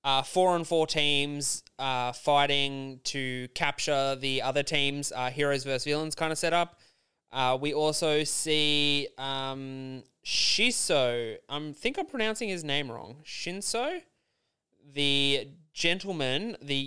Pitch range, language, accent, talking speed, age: 135-160 Hz, English, Australian, 125 wpm, 20-39